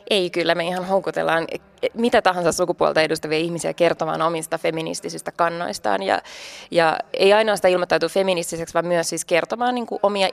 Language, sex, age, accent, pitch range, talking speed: Finnish, female, 20-39, native, 165-195 Hz, 150 wpm